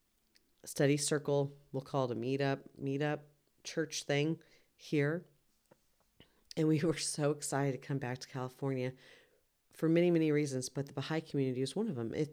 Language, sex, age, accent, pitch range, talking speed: English, female, 40-59, American, 130-150 Hz, 160 wpm